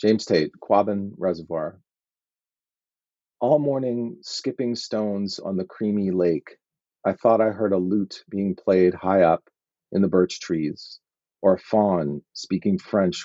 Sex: male